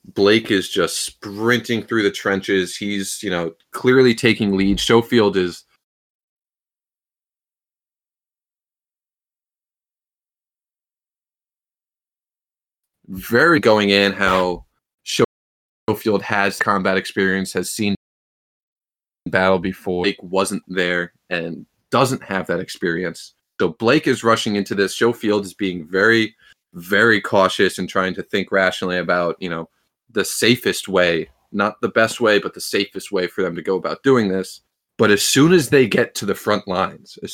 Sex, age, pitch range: male, 30-49, 90-100 Hz